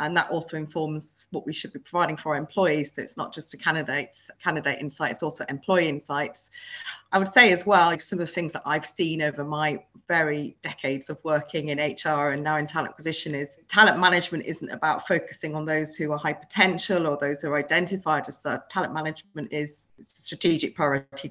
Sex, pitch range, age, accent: female, 150-175 Hz, 30-49, British